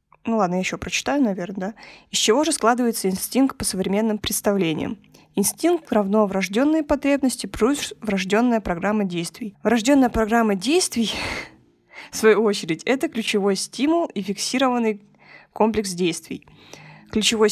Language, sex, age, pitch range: Russian, female, 20-39, 195-245 Hz